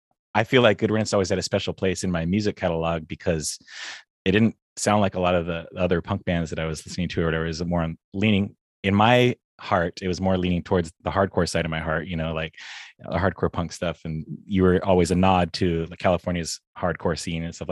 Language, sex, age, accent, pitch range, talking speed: English, male, 30-49, American, 85-100 Hz, 240 wpm